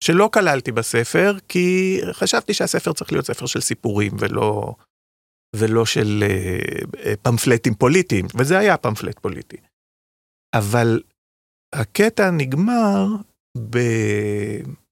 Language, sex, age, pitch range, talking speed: Hebrew, male, 40-59, 110-180 Hz, 105 wpm